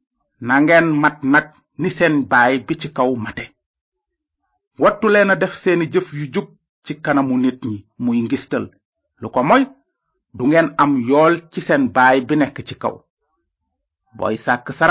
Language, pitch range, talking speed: French, 130-215 Hz, 55 wpm